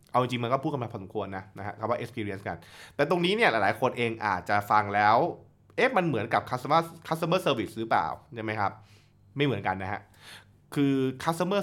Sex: male